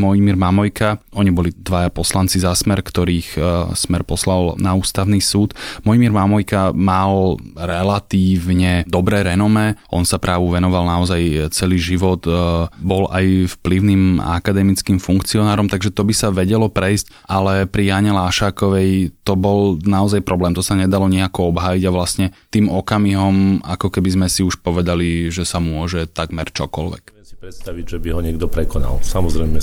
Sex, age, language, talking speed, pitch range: male, 20-39, Slovak, 150 wpm, 85-95 Hz